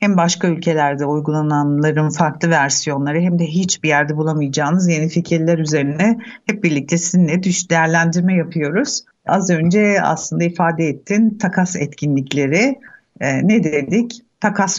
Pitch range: 150-185 Hz